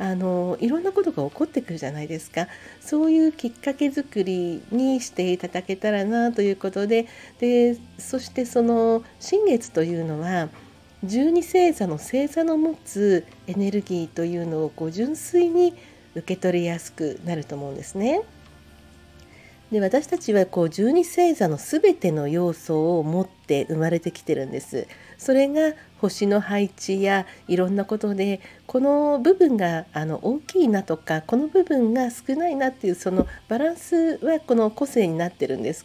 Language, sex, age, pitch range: Japanese, female, 50-69, 165-235 Hz